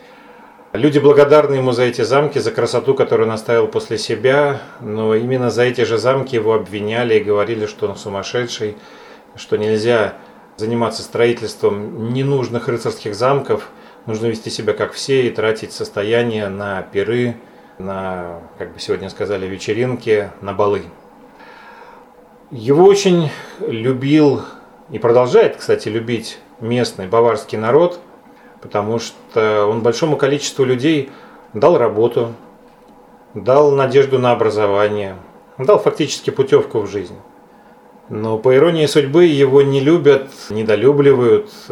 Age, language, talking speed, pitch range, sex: 30-49, Russian, 125 wpm, 105-155 Hz, male